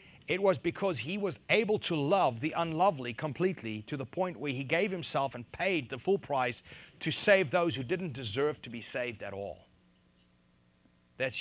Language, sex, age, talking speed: English, male, 40-59, 185 wpm